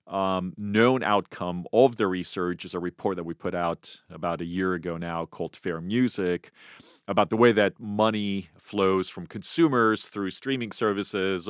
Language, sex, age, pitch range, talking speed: English, male, 40-59, 90-105 Hz, 165 wpm